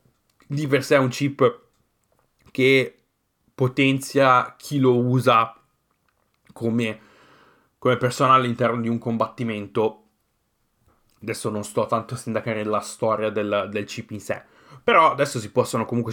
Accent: native